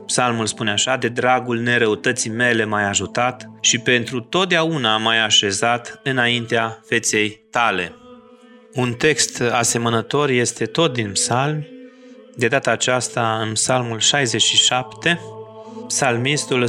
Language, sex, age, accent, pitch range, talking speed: Romanian, male, 30-49, native, 110-135 Hz, 110 wpm